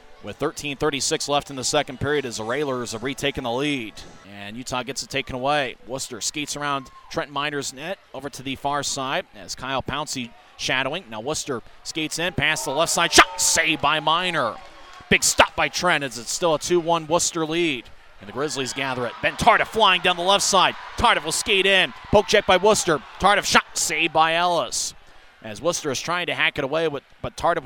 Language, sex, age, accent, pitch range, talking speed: English, male, 30-49, American, 135-170 Hz, 205 wpm